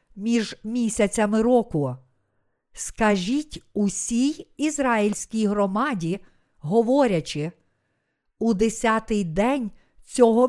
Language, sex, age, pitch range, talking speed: Ukrainian, female, 50-69, 185-240 Hz, 70 wpm